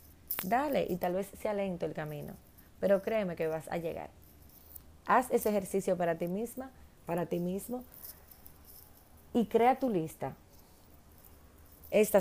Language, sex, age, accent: Spanish, female, 30-49, American